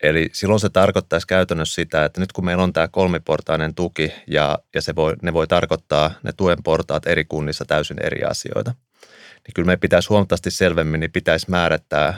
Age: 30-49